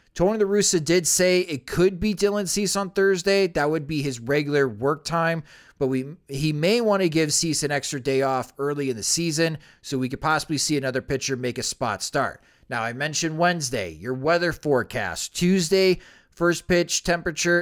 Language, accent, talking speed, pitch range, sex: English, American, 195 wpm, 130-175 Hz, male